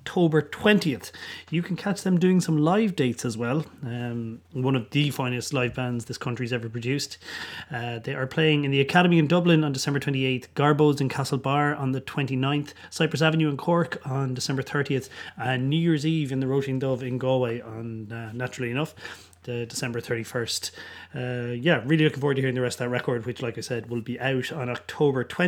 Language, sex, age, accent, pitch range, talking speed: English, male, 30-49, Irish, 120-155 Hz, 205 wpm